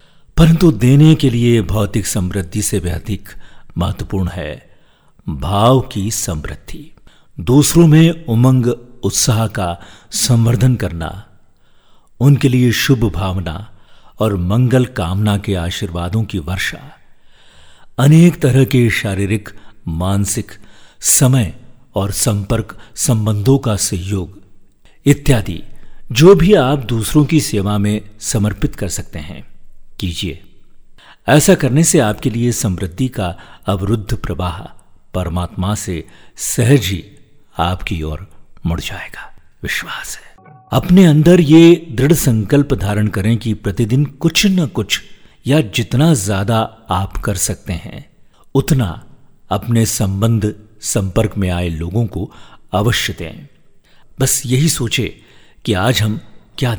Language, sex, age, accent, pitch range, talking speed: Hindi, male, 50-69, native, 95-130 Hz, 115 wpm